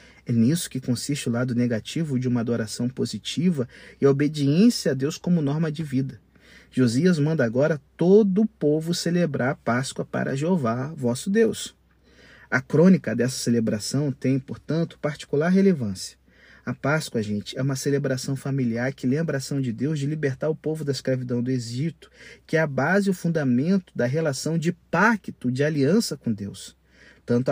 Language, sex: Portuguese, male